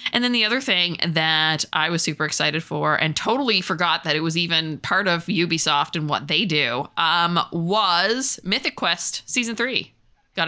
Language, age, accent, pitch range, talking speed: English, 20-39, American, 160-210 Hz, 185 wpm